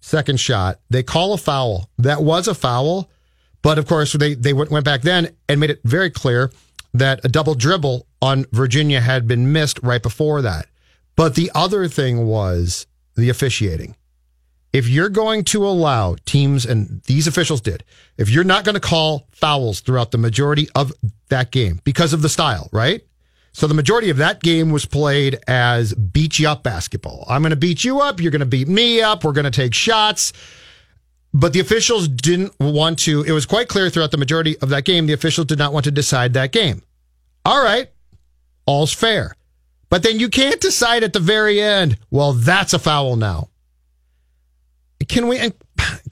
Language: English